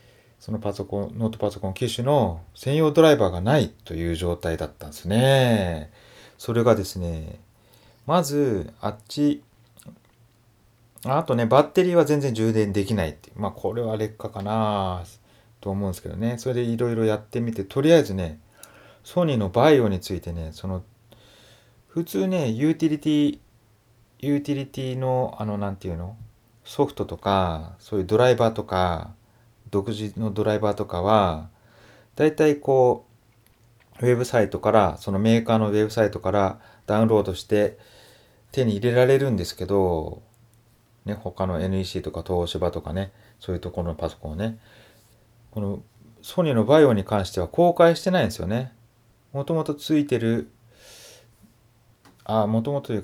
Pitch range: 100-120 Hz